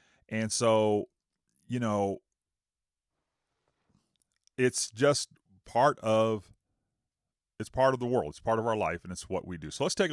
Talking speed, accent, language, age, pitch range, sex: 155 wpm, American, English, 40-59, 85-115 Hz, male